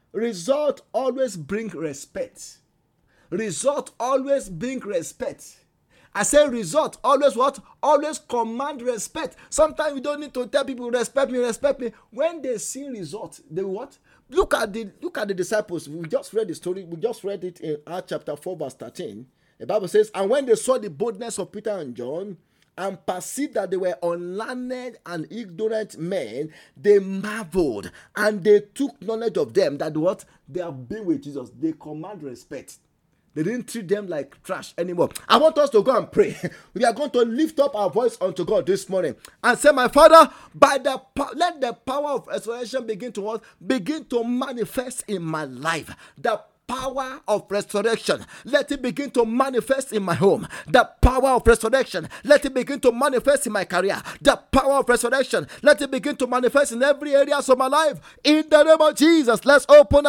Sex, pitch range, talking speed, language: male, 210-290 Hz, 185 wpm, English